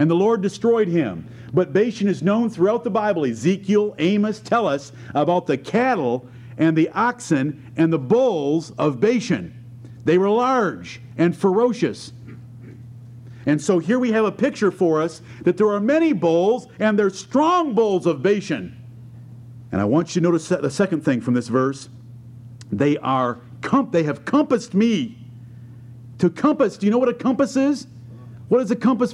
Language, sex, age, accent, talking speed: English, male, 50-69, American, 170 wpm